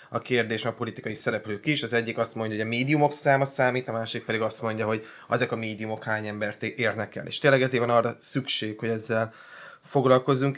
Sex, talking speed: male, 210 wpm